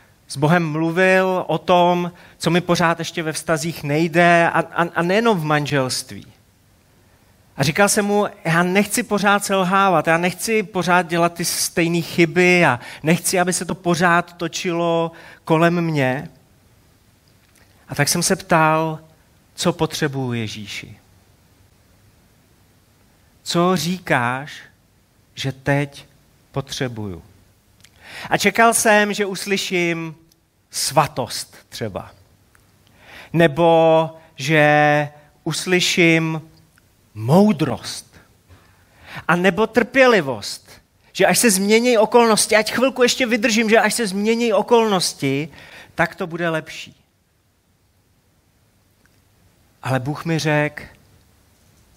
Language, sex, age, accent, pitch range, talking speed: Czech, male, 30-49, native, 105-175 Hz, 105 wpm